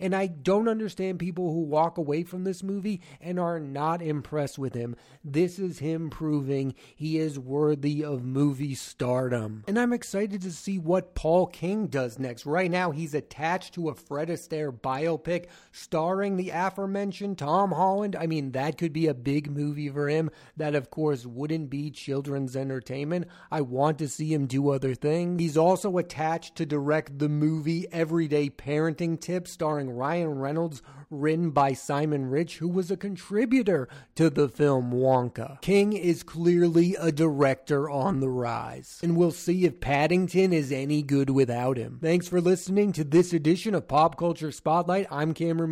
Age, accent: 30-49, American